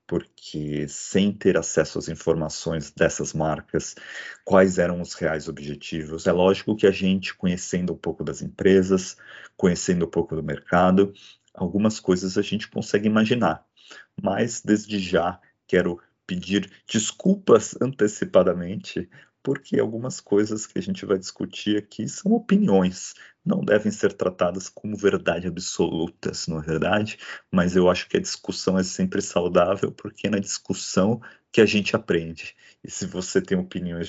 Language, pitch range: Portuguese, 85-105 Hz